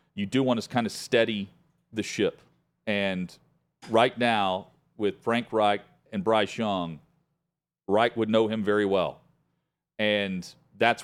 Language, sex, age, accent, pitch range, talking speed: English, male, 40-59, American, 100-135 Hz, 140 wpm